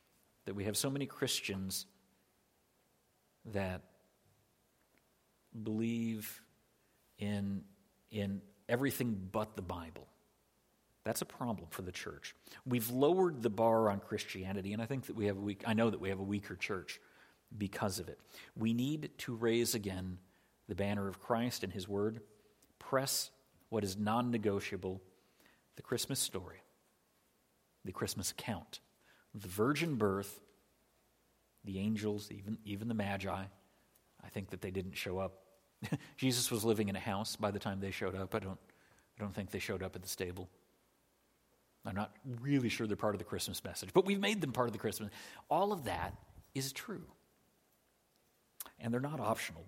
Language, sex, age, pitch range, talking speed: English, male, 50-69, 95-115 Hz, 160 wpm